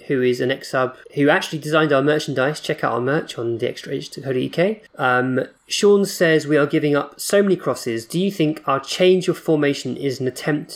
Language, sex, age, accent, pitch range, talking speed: English, male, 20-39, British, 130-165 Hz, 220 wpm